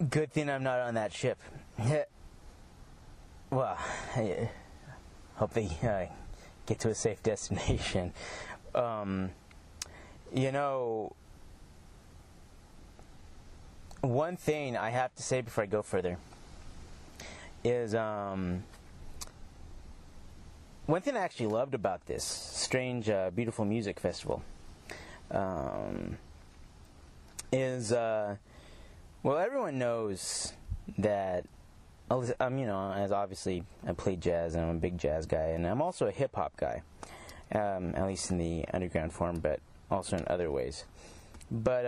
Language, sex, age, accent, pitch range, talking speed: English, male, 30-49, American, 80-120 Hz, 125 wpm